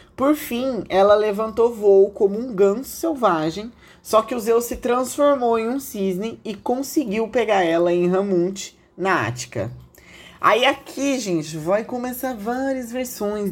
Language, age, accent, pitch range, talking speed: Portuguese, 20-39, Brazilian, 180-240 Hz, 145 wpm